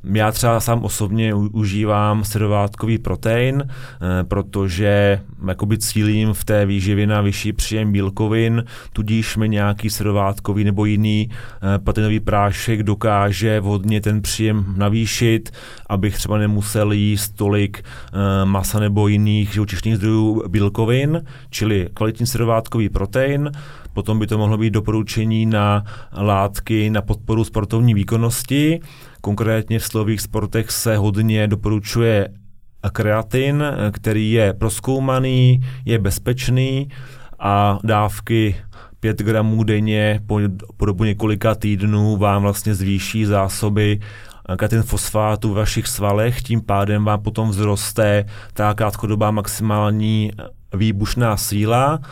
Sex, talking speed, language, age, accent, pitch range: male, 110 wpm, Czech, 30-49, native, 105-110 Hz